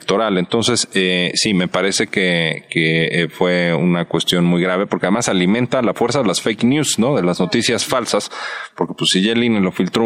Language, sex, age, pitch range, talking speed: Spanish, male, 40-59, 90-125 Hz, 210 wpm